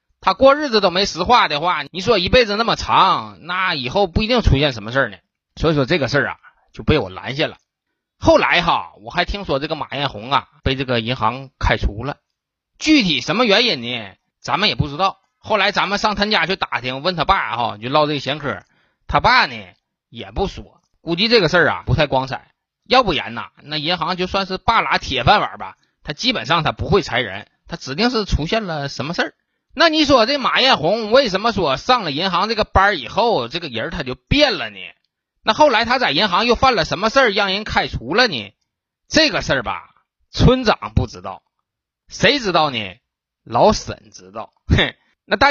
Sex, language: male, Chinese